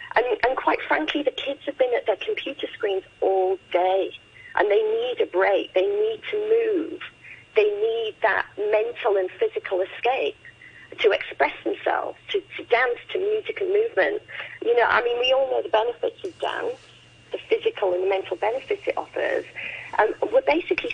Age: 40-59